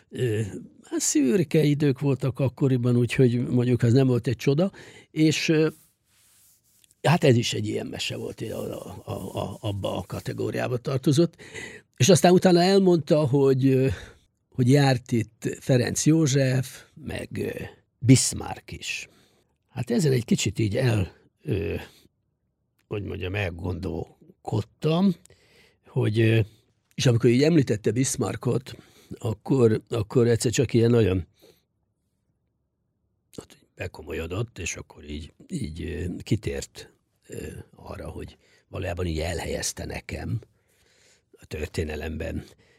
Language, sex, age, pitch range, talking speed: English, male, 60-79, 100-140 Hz, 105 wpm